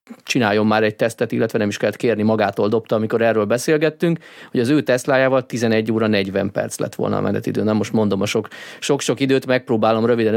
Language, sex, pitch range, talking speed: Hungarian, male, 105-130 Hz, 195 wpm